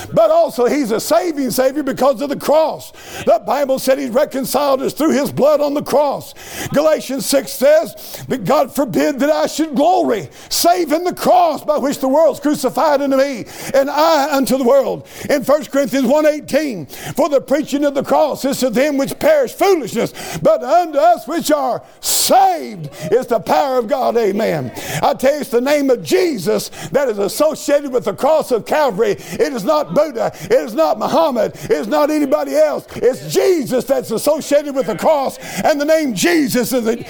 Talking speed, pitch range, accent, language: 190 wpm, 260-310 Hz, American, English